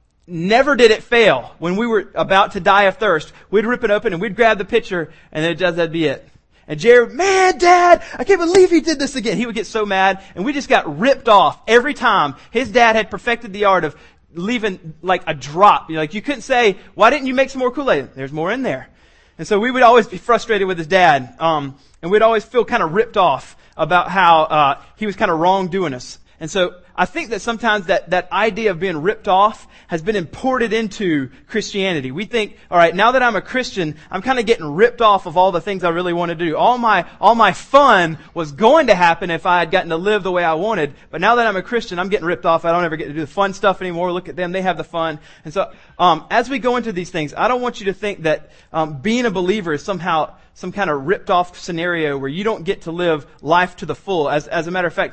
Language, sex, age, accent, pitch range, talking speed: English, male, 30-49, American, 165-225 Hz, 260 wpm